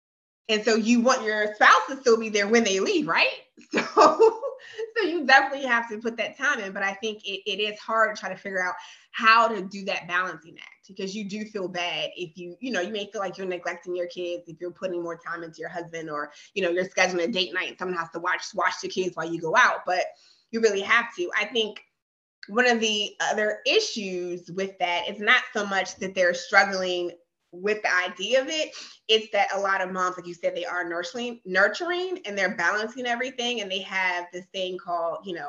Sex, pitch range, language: female, 180-230 Hz, English